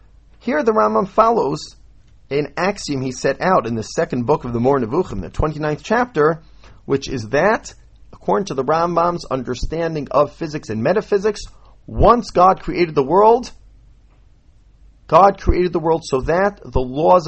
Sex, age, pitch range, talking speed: male, 40-59, 130-200 Hz, 155 wpm